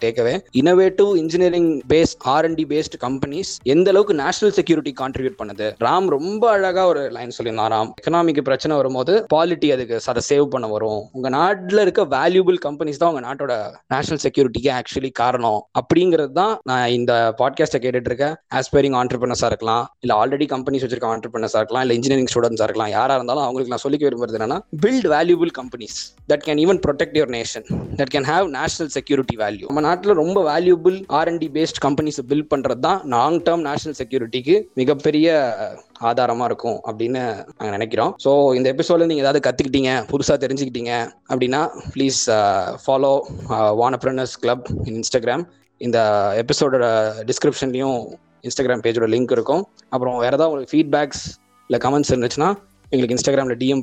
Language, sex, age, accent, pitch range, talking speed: Tamil, male, 20-39, native, 125-160 Hz, 150 wpm